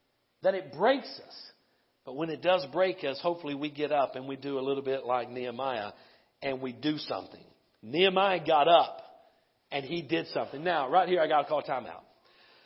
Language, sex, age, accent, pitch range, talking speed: English, male, 40-59, American, 150-215 Hz, 200 wpm